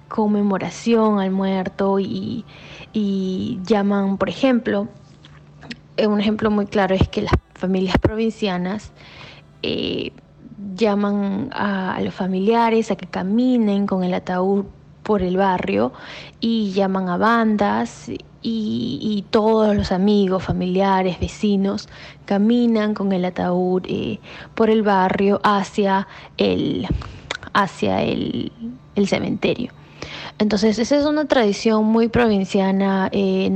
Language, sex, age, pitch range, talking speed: Spanish, female, 20-39, 195-225 Hz, 115 wpm